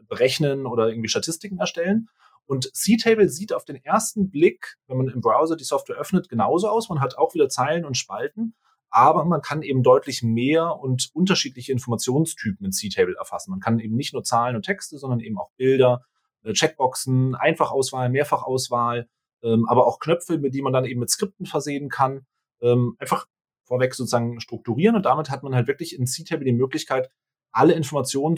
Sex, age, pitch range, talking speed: male, 30-49, 120-155 Hz, 175 wpm